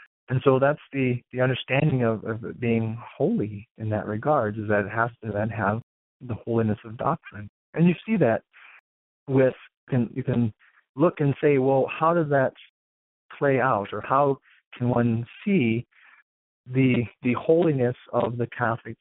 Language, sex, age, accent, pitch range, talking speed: English, male, 40-59, American, 115-140 Hz, 160 wpm